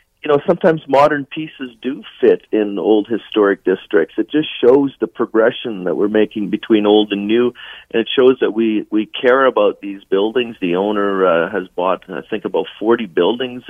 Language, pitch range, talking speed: English, 105-125 Hz, 190 wpm